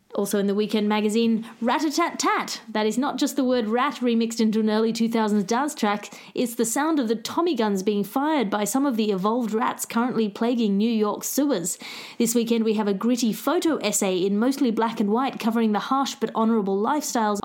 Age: 30-49